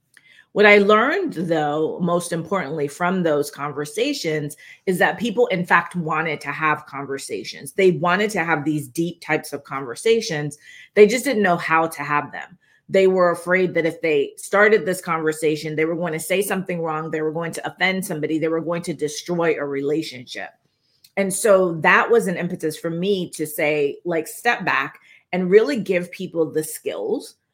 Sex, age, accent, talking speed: female, 30-49, American, 180 wpm